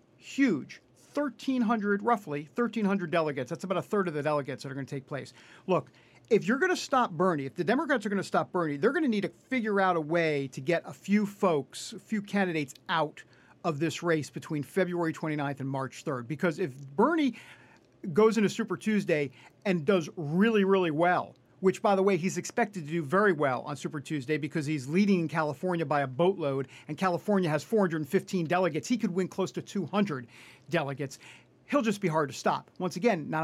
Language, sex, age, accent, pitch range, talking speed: English, male, 50-69, American, 155-205 Hz, 205 wpm